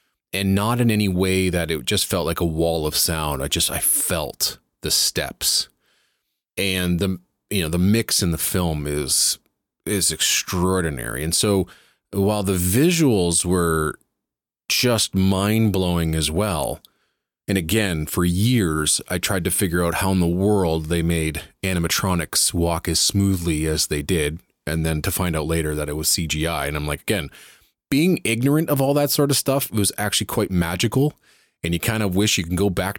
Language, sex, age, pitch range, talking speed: English, male, 30-49, 85-105 Hz, 185 wpm